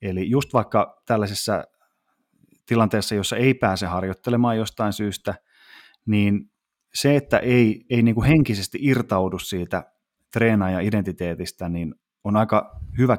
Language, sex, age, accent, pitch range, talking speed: Finnish, male, 30-49, native, 95-115 Hz, 125 wpm